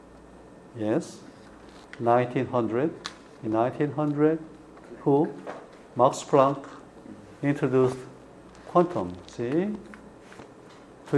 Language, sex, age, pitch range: Korean, male, 60-79, 125-155 Hz